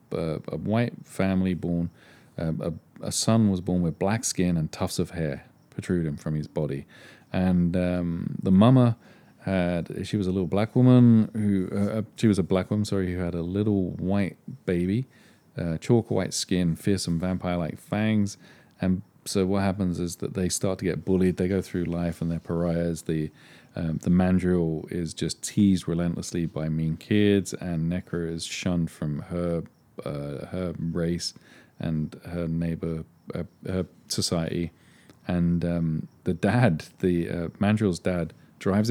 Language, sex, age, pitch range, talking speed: English, male, 40-59, 85-95 Hz, 165 wpm